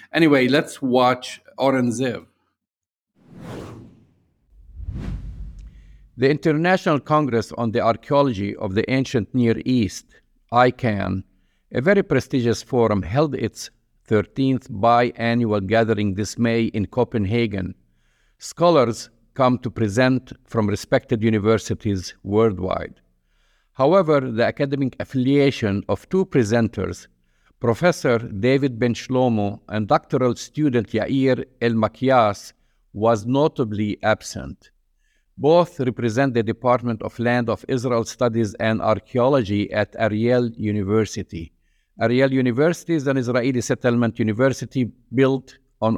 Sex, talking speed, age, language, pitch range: male, 105 wpm, 50-69, English, 105-130 Hz